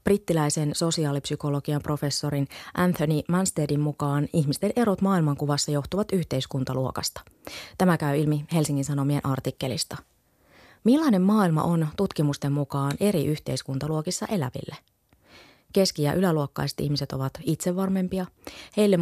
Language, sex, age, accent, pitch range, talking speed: Finnish, female, 30-49, native, 145-185 Hz, 100 wpm